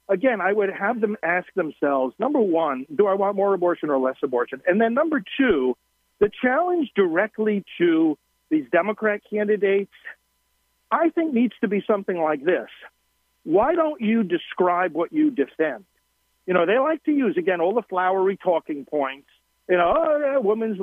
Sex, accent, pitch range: male, American, 165-250 Hz